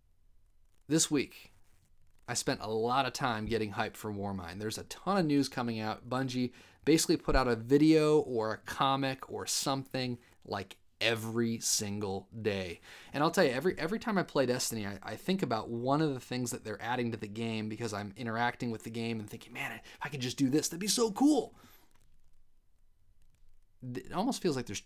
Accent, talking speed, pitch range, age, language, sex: American, 200 wpm, 105-140 Hz, 30-49, English, male